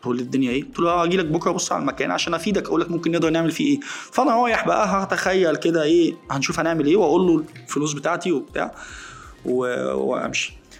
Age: 20-39